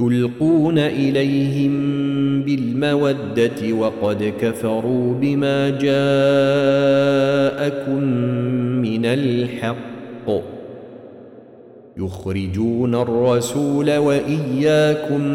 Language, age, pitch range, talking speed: Arabic, 40-59, 120-135 Hz, 45 wpm